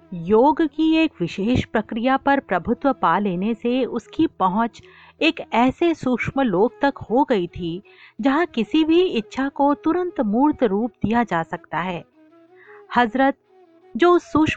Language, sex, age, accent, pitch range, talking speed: Hindi, female, 50-69, native, 215-310 Hz, 130 wpm